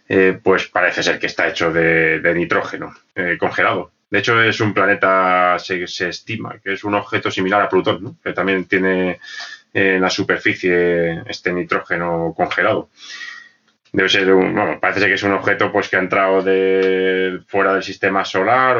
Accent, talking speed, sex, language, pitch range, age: Spanish, 180 wpm, male, Spanish, 95-105 Hz, 20-39